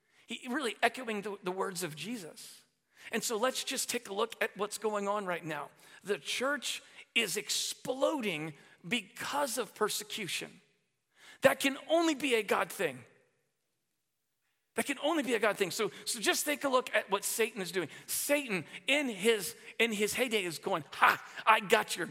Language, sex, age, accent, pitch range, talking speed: English, male, 40-59, American, 205-260 Hz, 175 wpm